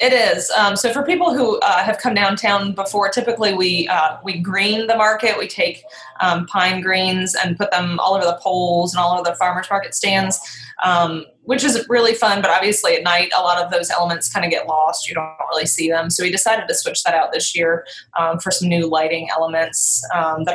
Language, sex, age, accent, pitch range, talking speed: English, female, 20-39, American, 165-190 Hz, 230 wpm